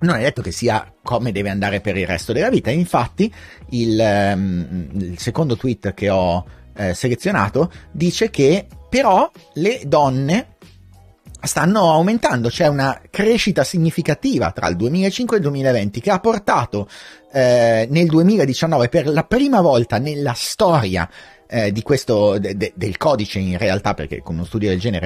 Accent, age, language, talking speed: native, 30-49, Italian, 155 wpm